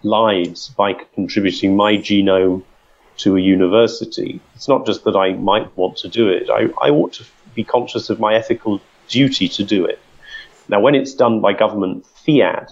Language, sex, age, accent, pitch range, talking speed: English, male, 40-59, British, 95-120 Hz, 180 wpm